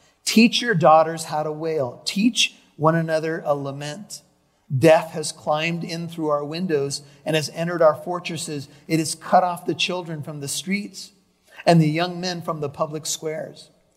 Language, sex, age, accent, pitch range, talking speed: English, male, 40-59, American, 145-175 Hz, 170 wpm